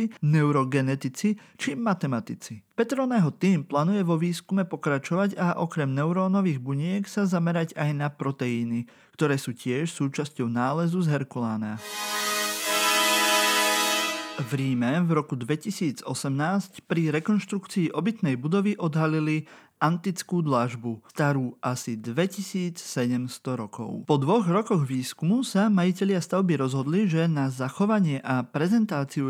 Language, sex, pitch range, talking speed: Slovak, male, 135-190 Hz, 110 wpm